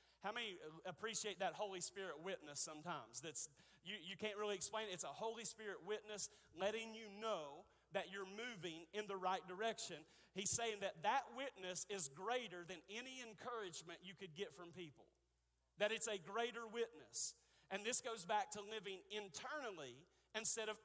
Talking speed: 170 wpm